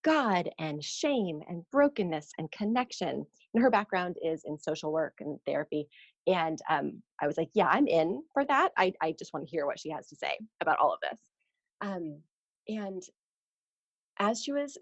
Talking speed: 185 wpm